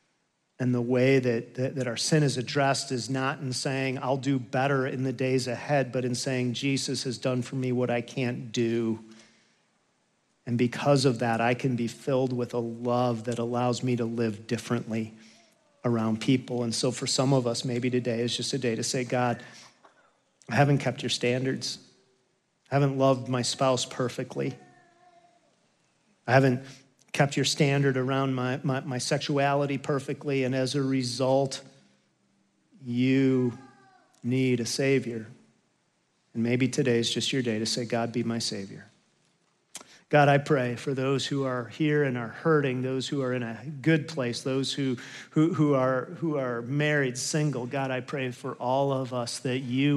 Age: 40-59